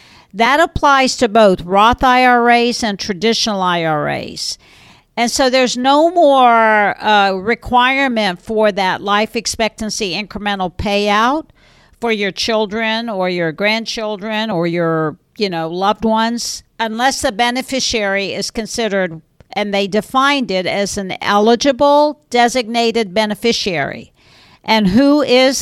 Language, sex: English, female